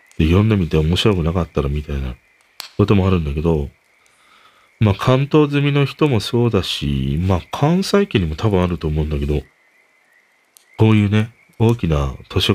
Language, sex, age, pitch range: Japanese, male, 40-59, 75-95 Hz